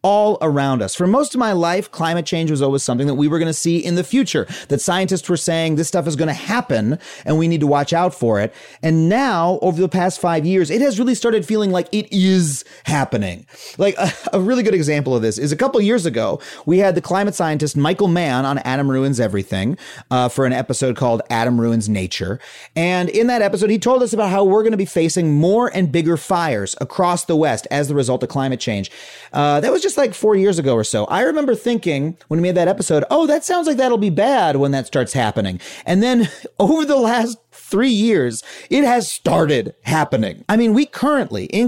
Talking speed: 230 wpm